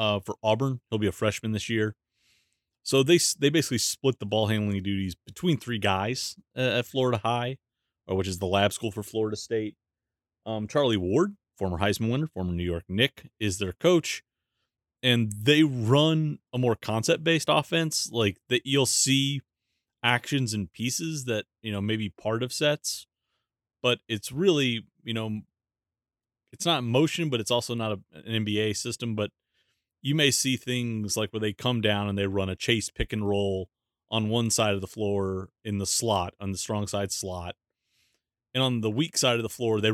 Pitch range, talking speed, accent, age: 100-125 Hz, 190 wpm, American, 30-49